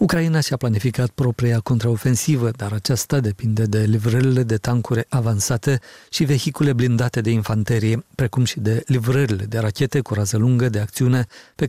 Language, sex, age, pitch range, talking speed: Romanian, male, 40-59, 115-135 Hz, 155 wpm